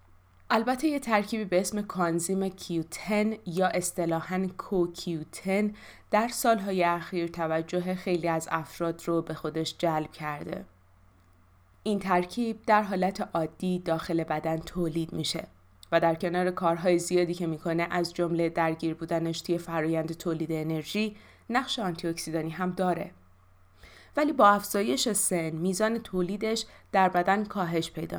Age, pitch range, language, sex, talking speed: 20-39, 165-195 Hz, Persian, female, 130 wpm